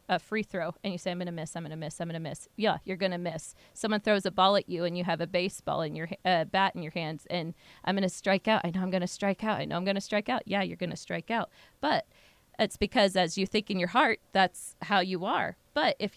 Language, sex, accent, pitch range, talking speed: English, female, American, 175-215 Hz, 305 wpm